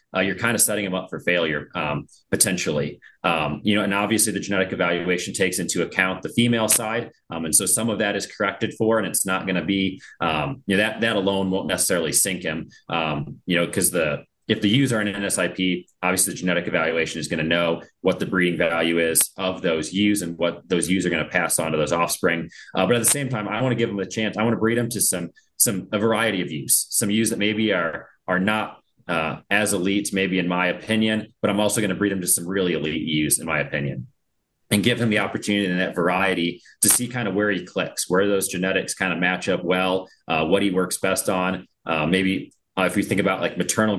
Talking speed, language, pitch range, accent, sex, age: 250 wpm, English, 85-105 Hz, American, male, 30-49